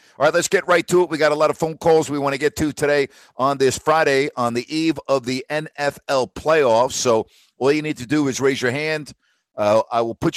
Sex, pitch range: male, 110-140 Hz